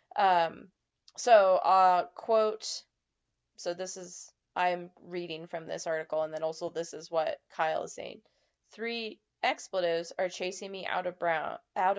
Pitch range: 170-215 Hz